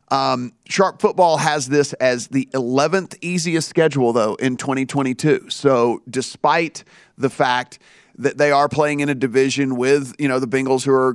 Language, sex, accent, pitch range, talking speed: English, male, American, 125-145 Hz, 165 wpm